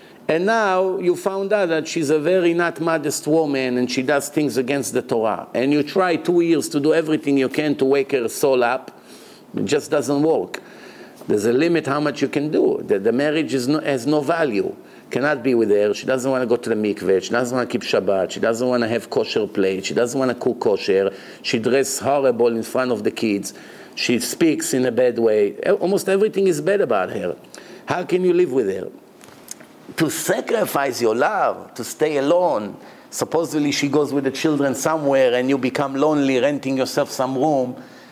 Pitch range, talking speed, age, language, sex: 135-180 Hz, 210 wpm, 50-69, English, male